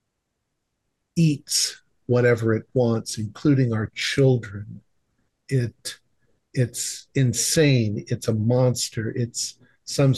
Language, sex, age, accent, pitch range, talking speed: English, male, 50-69, American, 110-130 Hz, 90 wpm